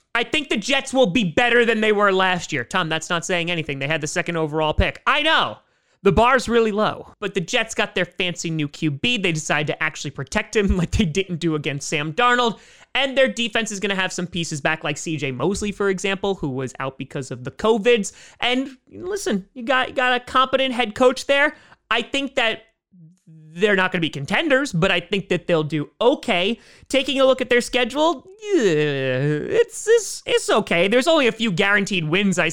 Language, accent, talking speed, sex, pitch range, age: English, American, 210 wpm, male, 160-230 Hz, 30-49